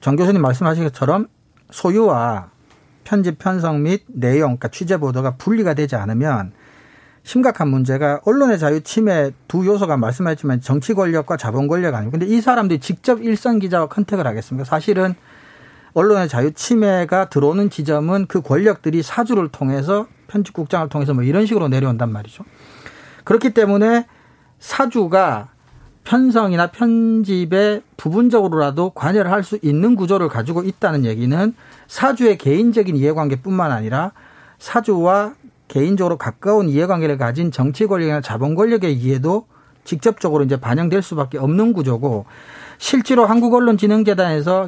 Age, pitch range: 40-59, 140-205 Hz